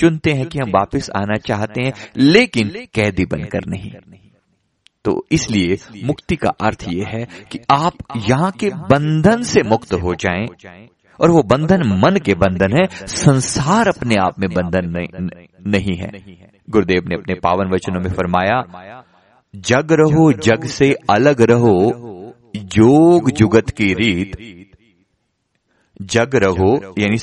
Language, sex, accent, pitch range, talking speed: Hindi, male, native, 95-145 Hz, 135 wpm